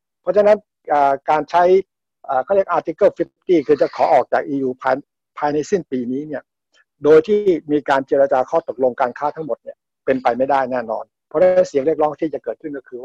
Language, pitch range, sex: Thai, 135-185 Hz, male